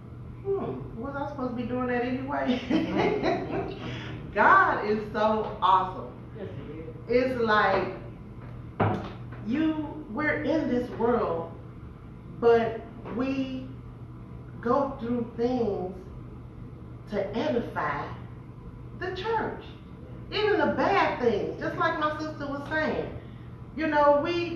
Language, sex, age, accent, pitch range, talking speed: English, female, 30-49, American, 195-275 Hz, 105 wpm